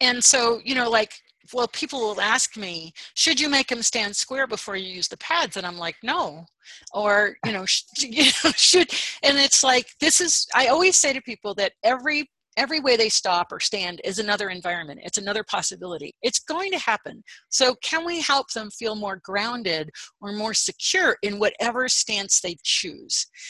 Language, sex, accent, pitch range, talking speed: English, female, American, 195-255 Hz, 195 wpm